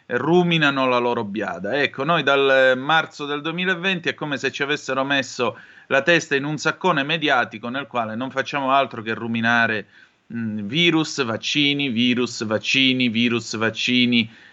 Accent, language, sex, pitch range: native, Italian, male, 115-145 Hz